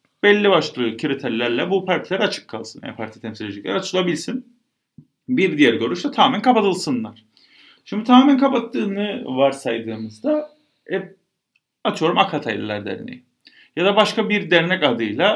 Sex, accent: male, native